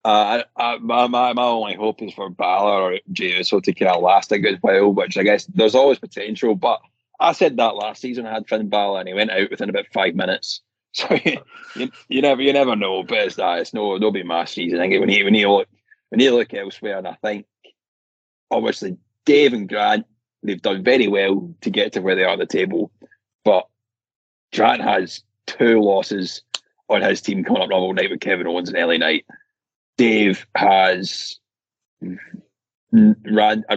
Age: 30-49